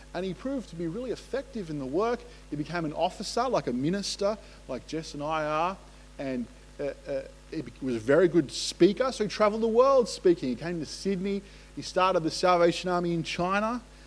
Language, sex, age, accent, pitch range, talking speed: English, male, 30-49, Australian, 130-195 Hz, 205 wpm